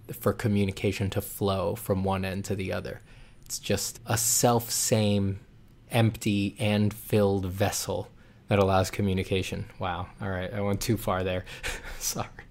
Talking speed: 145 wpm